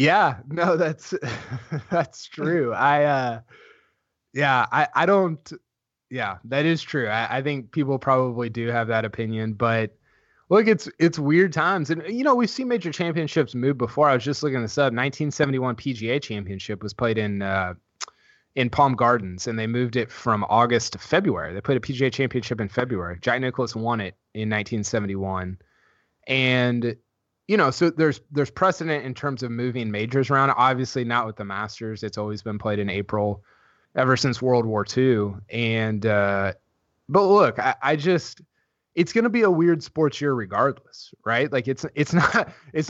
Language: English